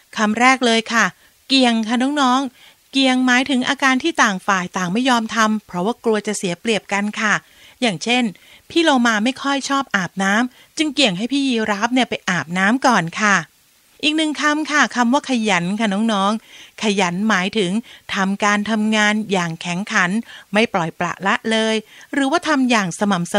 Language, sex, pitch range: Thai, female, 195-255 Hz